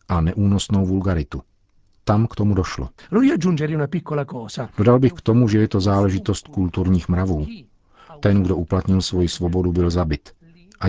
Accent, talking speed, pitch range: native, 140 wpm, 85-100 Hz